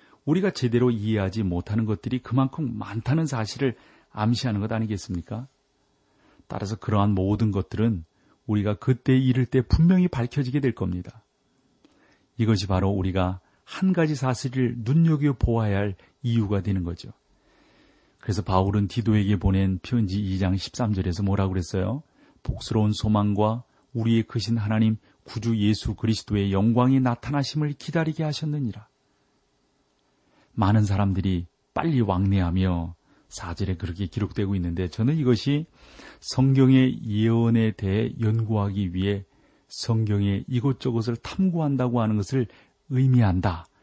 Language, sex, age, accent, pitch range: Korean, male, 40-59, native, 100-130 Hz